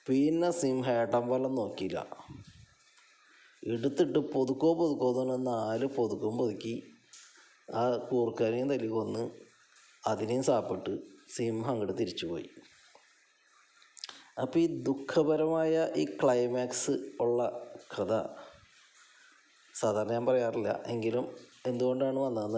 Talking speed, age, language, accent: 85 wpm, 20-39, Malayalam, native